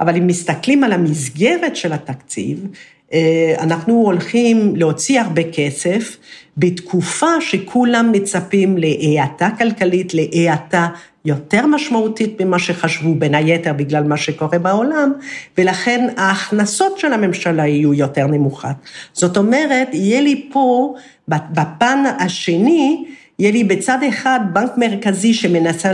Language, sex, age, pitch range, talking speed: Hebrew, female, 50-69, 160-235 Hz, 115 wpm